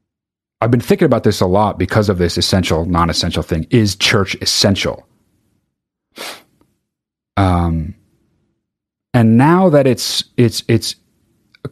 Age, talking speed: 30-49, 125 wpm